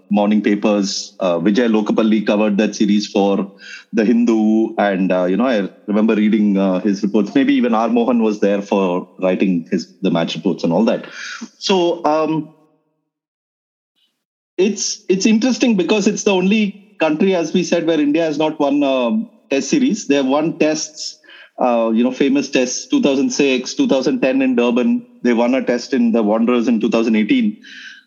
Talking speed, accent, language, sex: 170 wpm, Indian, English, male